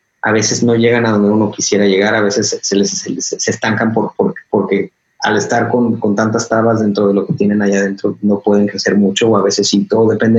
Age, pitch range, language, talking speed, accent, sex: 30-49, 105-120 Hz, Spanish, 250 wpm, Mexican, male